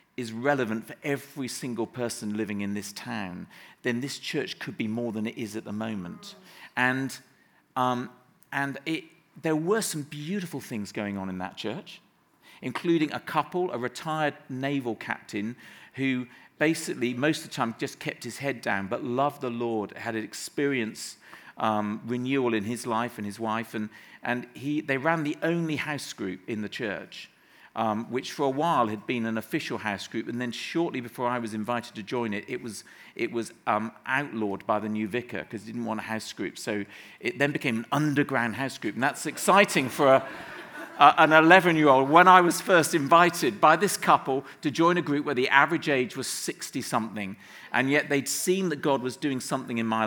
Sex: male